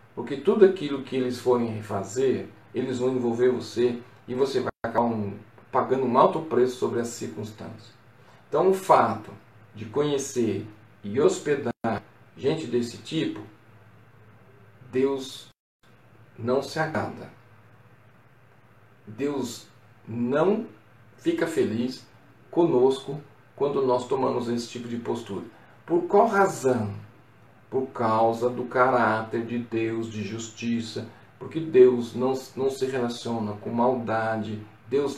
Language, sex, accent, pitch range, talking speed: Portuguese, male, Brazilian, 115-130 Hz, 115 wpm